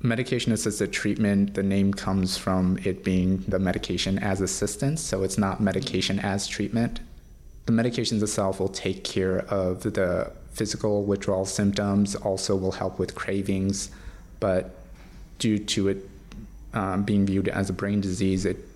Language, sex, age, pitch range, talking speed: English, male, 20-39, 95-105 Hz, 150 wpm